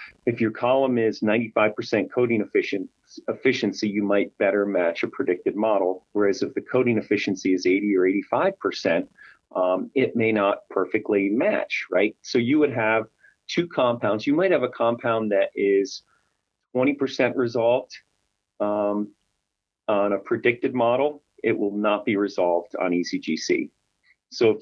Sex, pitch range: male, 100-125 Hz